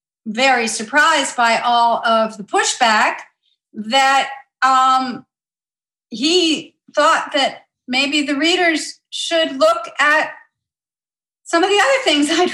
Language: English